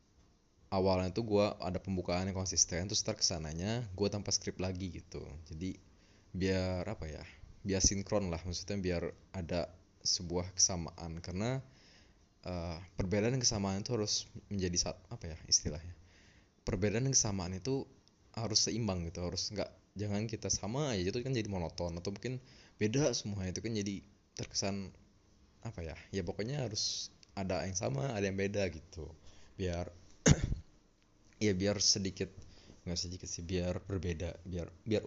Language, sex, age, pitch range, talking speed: Indonesian, male, 20-39, 85-105 Hz, 145 wpm